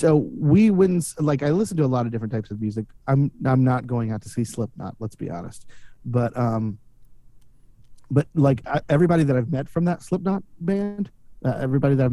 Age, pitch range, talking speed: 30-49, 115-145 Hz, 210 wpm